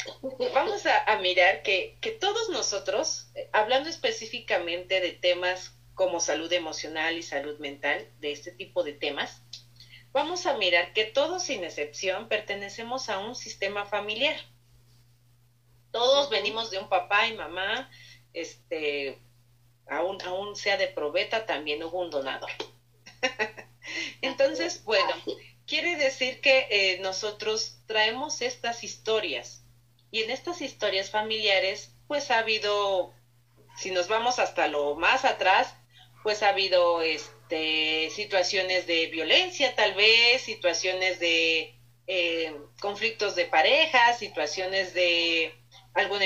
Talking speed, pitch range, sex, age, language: 120 wpm, 150-225 Hz, female, 40-59, Spanish